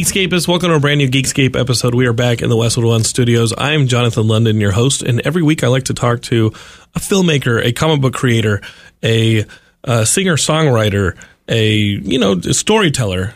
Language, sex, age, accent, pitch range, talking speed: English, male, 30-49, American, 110-140 Hz, 185 wpm